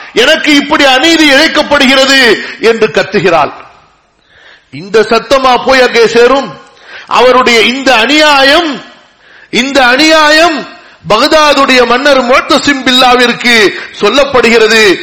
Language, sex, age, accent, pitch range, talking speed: Tamil, male, 50-69, native, 210-285 Hz, 80 wpm